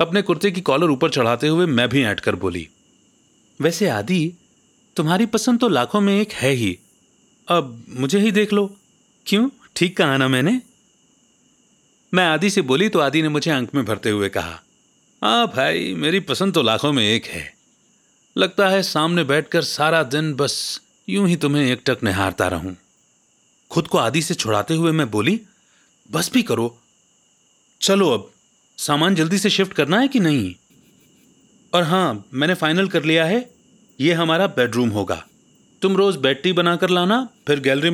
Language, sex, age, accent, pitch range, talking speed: Hindi, male, 40-59, native, 125-195 Hz, 170 wpm